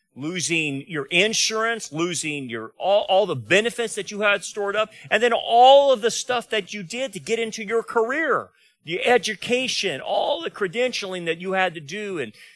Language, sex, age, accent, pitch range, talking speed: English, male, 40-59, American, 170-225 Hz, 185 wpm